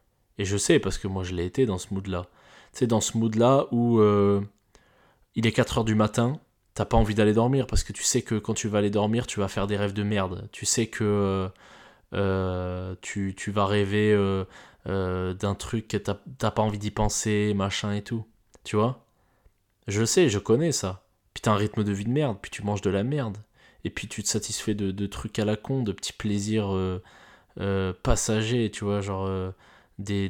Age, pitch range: 20-39, 100-115 Hz